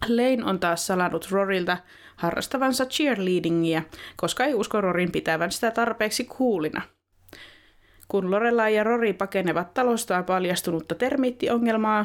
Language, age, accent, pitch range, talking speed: Finnish, 20-39, native, 175-235 Hz, 115 wpm